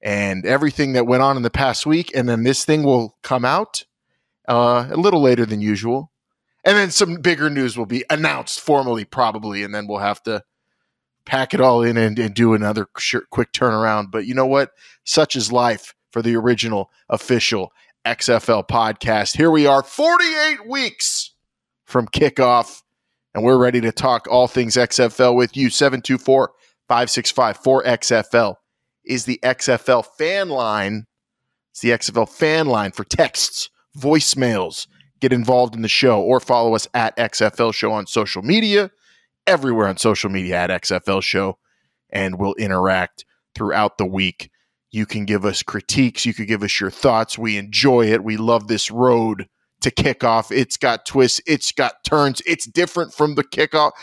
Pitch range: 110-140 Hz